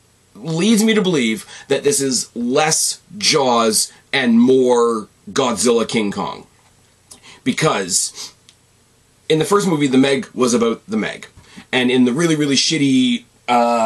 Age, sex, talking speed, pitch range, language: 30-49, male, 140 wpm, 120-160 Hz, English